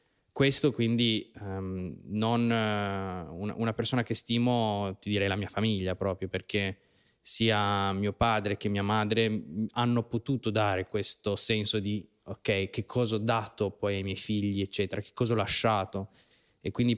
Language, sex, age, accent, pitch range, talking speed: Italian, male, 20-39, native, 100-115 Hz, 160 wpm